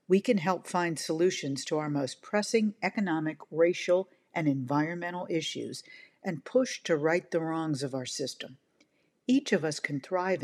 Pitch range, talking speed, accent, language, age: 150-205 Hz, 160 wpm, American, English, 50-69